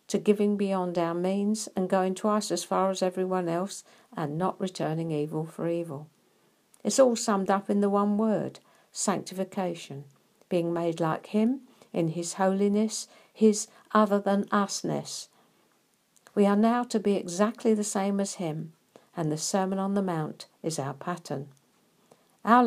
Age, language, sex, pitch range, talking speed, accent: 60-79, English, female, 170-210 Hz, 155 wpm, British